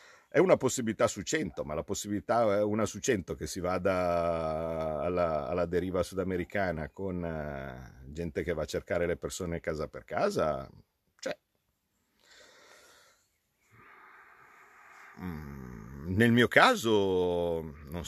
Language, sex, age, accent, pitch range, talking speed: Italian, male, 50-69, native, 80-105 Hz, 115 wpm